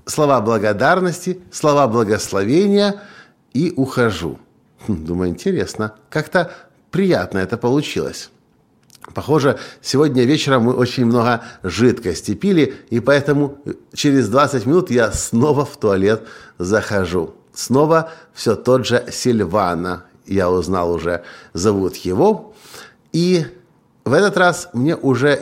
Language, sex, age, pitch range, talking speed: Russian, male, 50-69, 110-150 Hz, 110 wpm